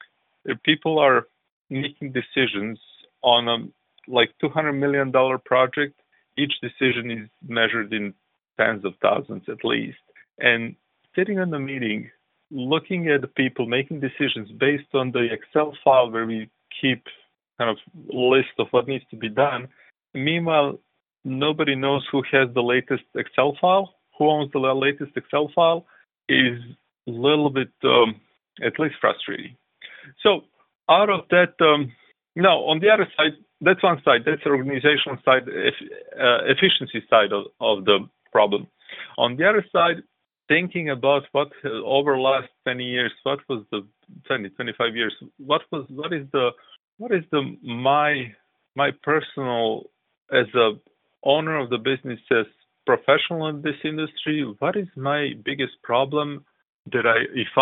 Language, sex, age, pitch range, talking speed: English, male, 40-59, 125-150 Hz, 155 wpm